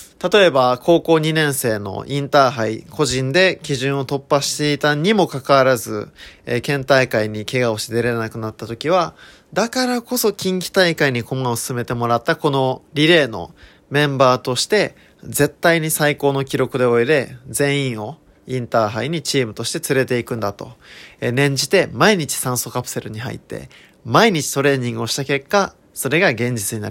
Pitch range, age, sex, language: 120-165 Hz, 20-39, male, Japanese